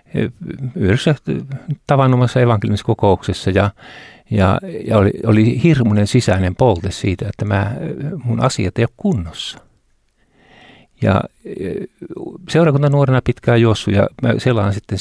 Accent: native